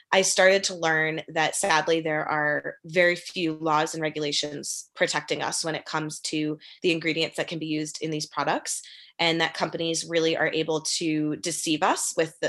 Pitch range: 155-180 Hz